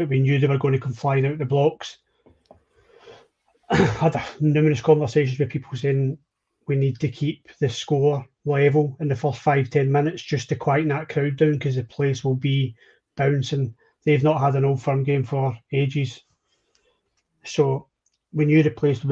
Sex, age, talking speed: male, 30-49, 180 wpm